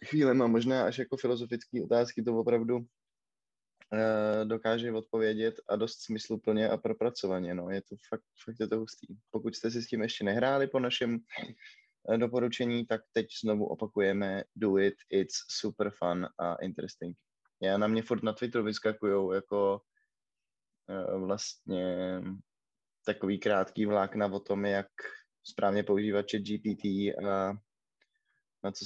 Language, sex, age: Czech, male, 20-39